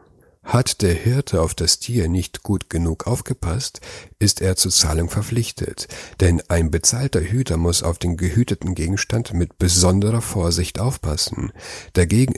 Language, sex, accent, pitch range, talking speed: German, male, German, 85-110 Hz, 140 wpm